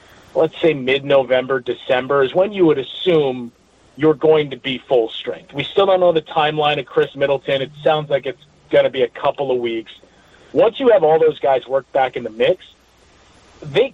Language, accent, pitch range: English, American, 130-180 Hz